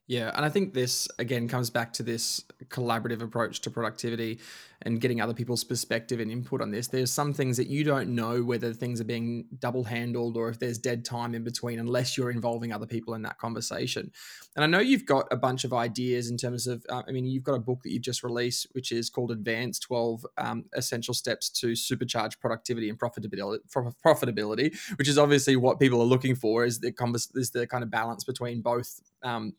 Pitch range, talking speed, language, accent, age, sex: 120-130 Hz, 220 wpm, English, Australian, 20-39, male